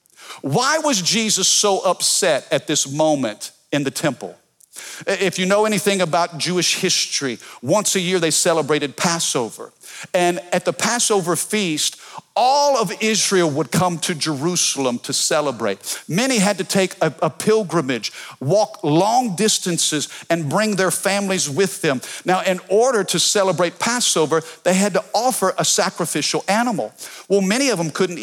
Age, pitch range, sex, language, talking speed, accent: 50-69, 160-205 Hz, male, English, 150 wpm, American